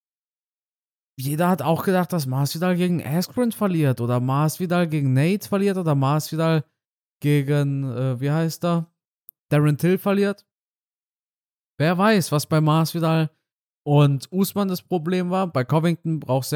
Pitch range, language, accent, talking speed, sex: 135-185 Hz, German, German, 145 wpm, male